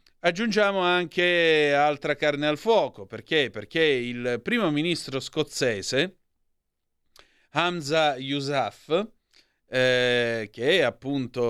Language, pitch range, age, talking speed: Italian, 125-165 Hz, 30-49, 95 wpm